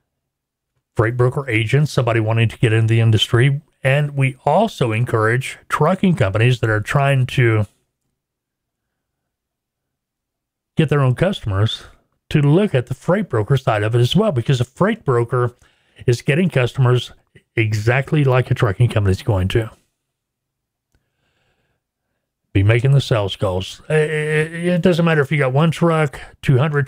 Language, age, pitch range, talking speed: English, 40-59, 115-145 Hz, 145 wpm